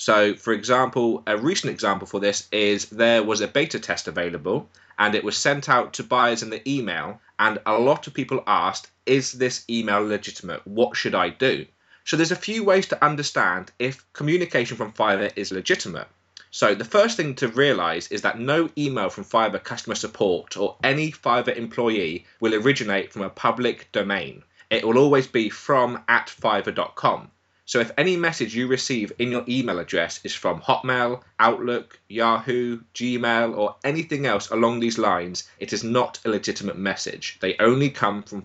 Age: 20-39